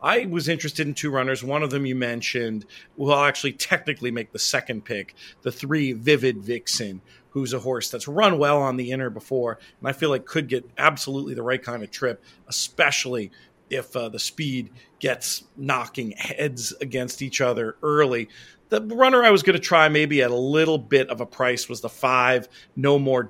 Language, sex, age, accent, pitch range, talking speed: English, male, 40-59, American, 125-150 Hz, 195 wpm